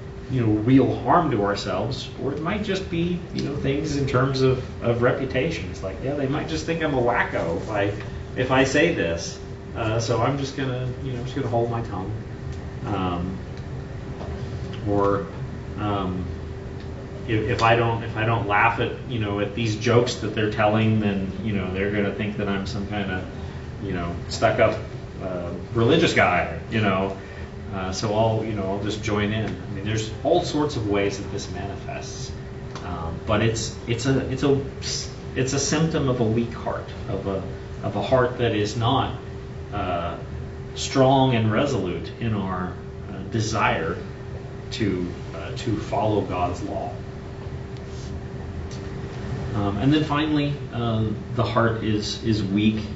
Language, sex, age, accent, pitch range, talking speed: English, male, 30-49, American, 100-130 Hz, 170 wpm